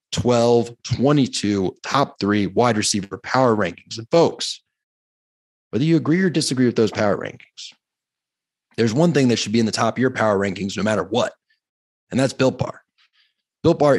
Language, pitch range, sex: English, 115-150 Hz, male